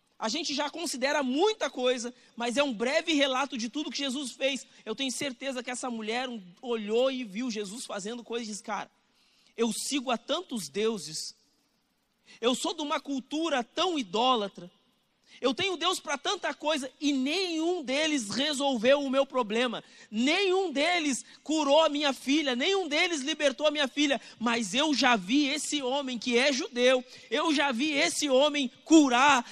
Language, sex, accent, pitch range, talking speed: Portuguese, male, Brazilian, 225-285 Hz, 170 wpm